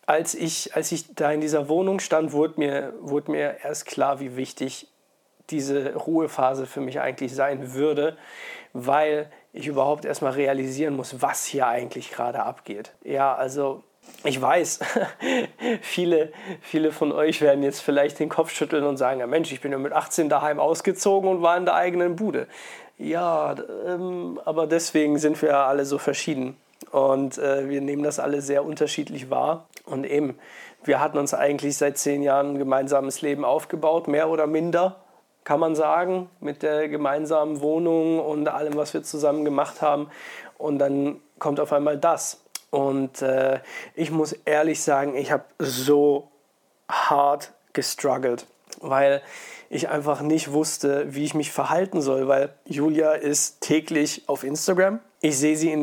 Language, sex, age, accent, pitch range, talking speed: German, male, 40-59, German, 140-155 Hz, 160 wpm